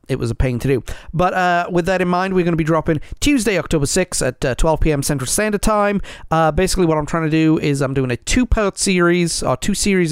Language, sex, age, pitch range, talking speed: English, male, 30-49, 130-170 Hz, 250 wpm